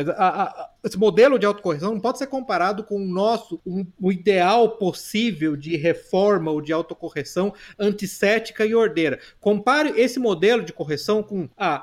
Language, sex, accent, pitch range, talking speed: Portuguese, male, Brazilian, 190-245 Hz, 175 wpm